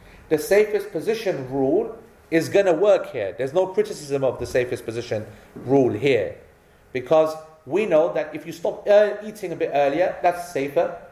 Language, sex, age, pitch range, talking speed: English, male, 40-59, 145-185 Hz, 165 wpm